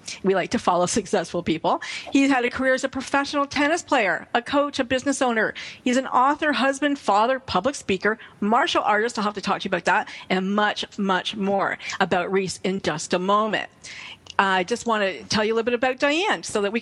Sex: female